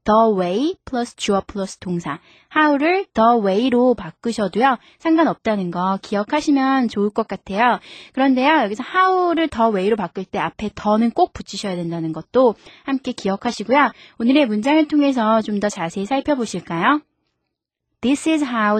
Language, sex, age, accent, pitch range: Korean, female, 20-39, native, 195-275 Hz